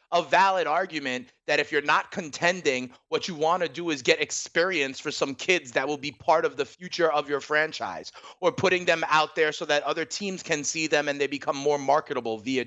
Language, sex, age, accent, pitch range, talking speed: English, male, 30-49, American, 140-175 Hz, 225 wpm